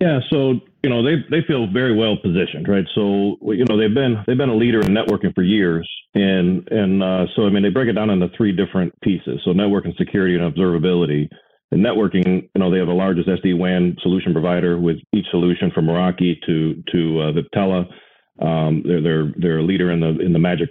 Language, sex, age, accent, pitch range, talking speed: English, male, 40-59, American, 85-95 Hz, 215 wpm